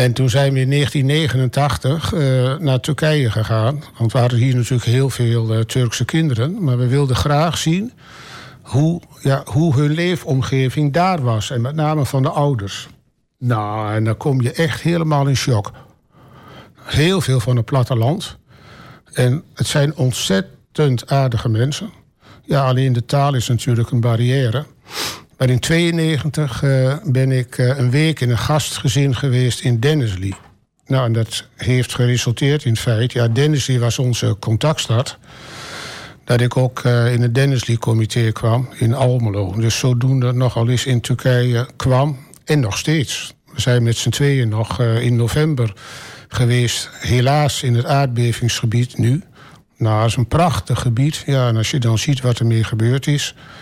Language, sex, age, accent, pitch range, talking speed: Dutch, male, 60-79, Dutch, 120-140 Hz, 160 wpm